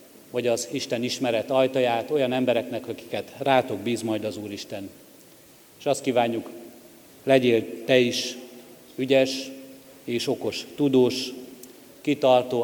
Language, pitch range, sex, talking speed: Hungarian, 115-130 Hz, male, 115 wpm